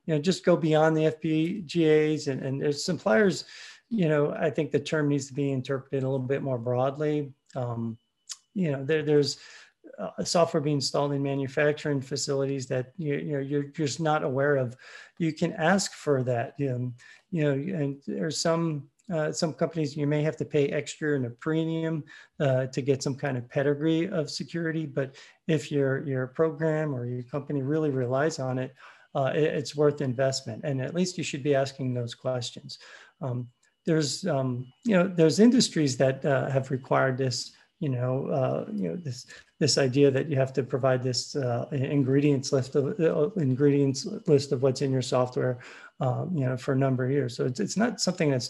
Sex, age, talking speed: male, 40-59, 195 wpm